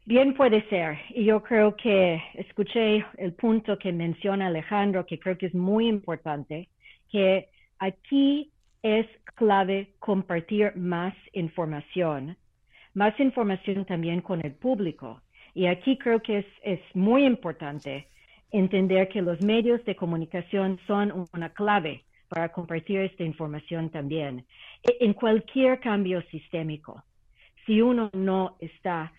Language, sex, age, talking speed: Spanish, female, 40-59, 125 wpm